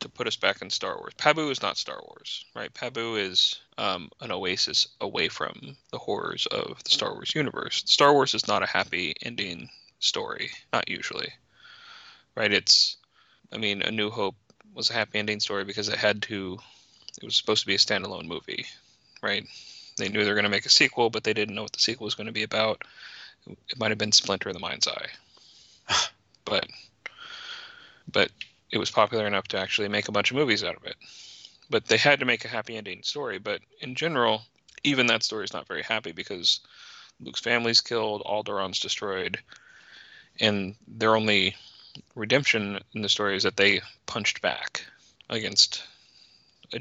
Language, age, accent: English, 20-39, American